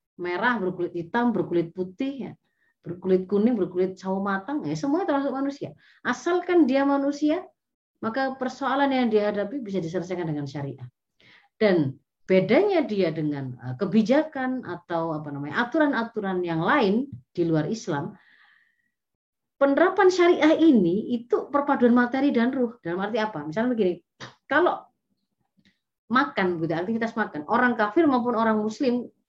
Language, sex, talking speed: Indonesian, female, 130 wpm